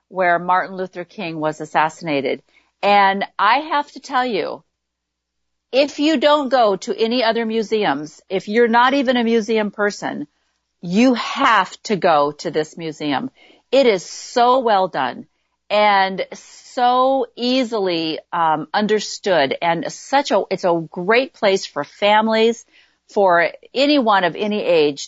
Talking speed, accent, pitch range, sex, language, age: 140 wpm, American, 180-245 Hz, female, English, 50-69